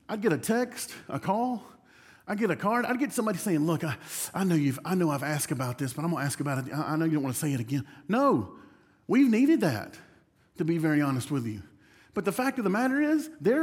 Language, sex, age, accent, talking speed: English, male, 40-59, American, 260 wpm